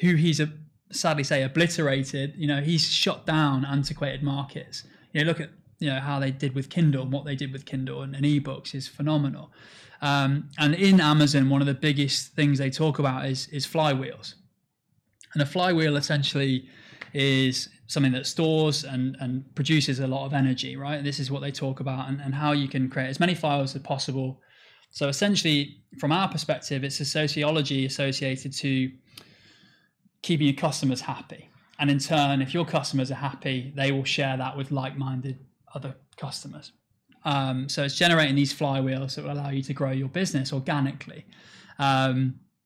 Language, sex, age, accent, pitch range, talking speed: English, male, 20-39, British, 135-150 Hz, 185 wpm